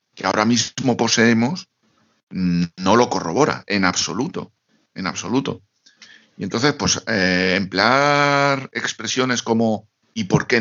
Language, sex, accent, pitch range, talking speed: Spanish, male, Spanish, 95-120 Hz, 120 wpm